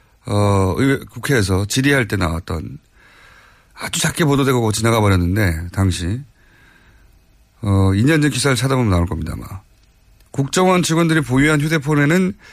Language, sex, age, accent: Korean, male, 30-49, native